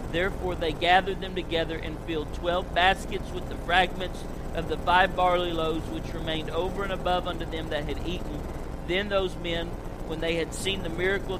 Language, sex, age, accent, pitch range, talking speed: English, male, 50-69, American, 160-200 Hz, 190 wpm